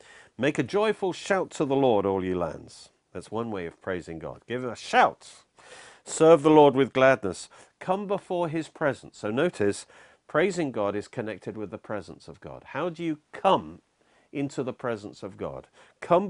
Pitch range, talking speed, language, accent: 100-145 Hz, 180 wpm, English, British